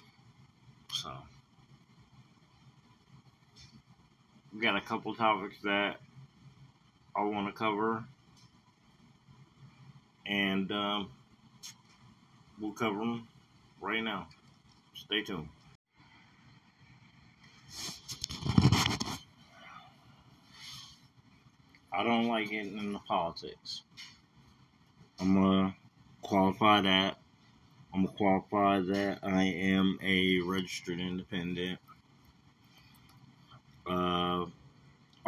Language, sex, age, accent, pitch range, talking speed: English, male, 30-49, American, 95-110 Hz, 70 wpm